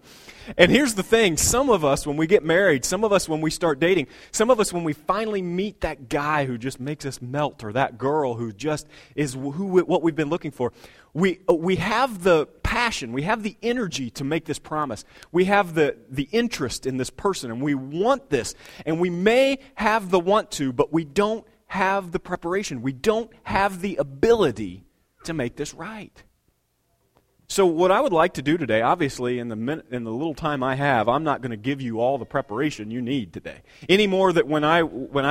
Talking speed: 220 wpm